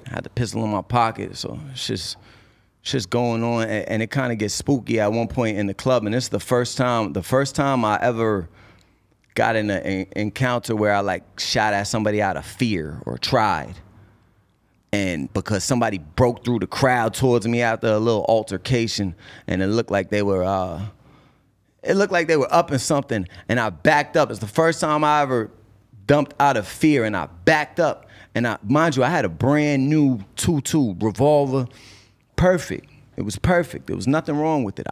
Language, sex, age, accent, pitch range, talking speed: English, male, 30-49, American, 105-135 Hz, 205 wpm